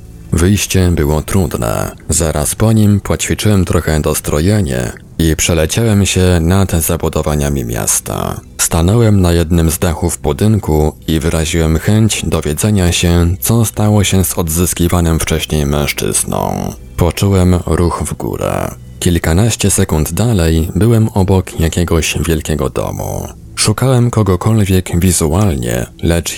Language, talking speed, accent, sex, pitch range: Polish, 110 wpm, native, male, 80-100 Hz